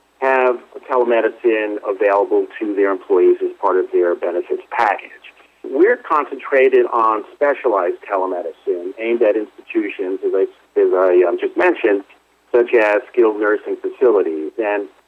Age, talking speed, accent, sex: 40-59, 125 wpm, American, male